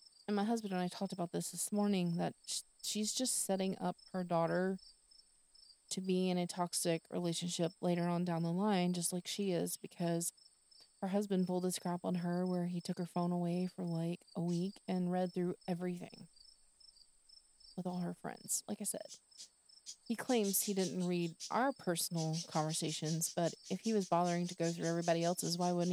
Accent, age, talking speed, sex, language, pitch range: American, 30-49, 185 wpm, female, English, 165-185 Hz